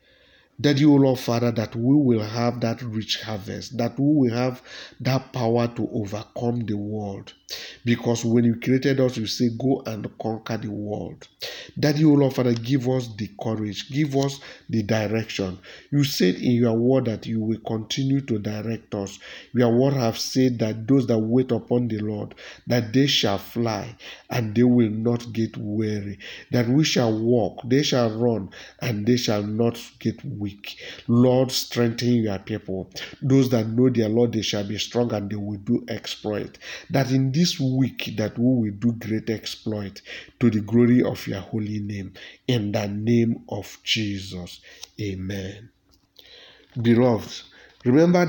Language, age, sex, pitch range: English, 50-69, male, 105-125 Hz